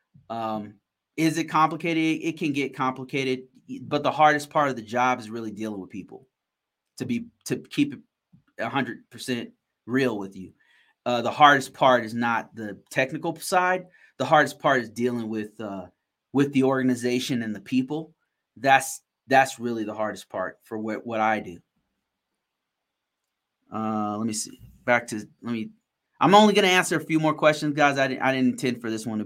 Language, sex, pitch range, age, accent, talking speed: English, male, 115-150 Hz, 30-49, American, 185 wpm